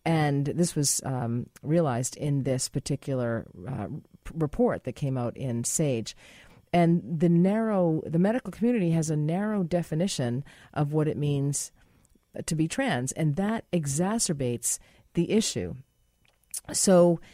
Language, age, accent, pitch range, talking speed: English, 40-59, American, 130-170 Hz, 130 wpm